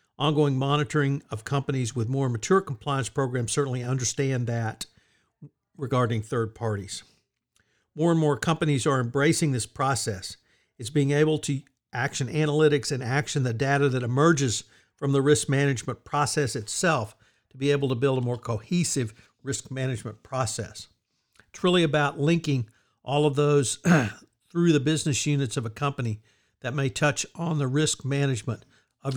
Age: 60-79